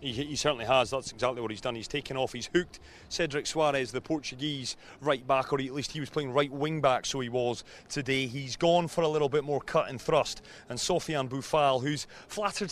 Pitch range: 135-165 Hz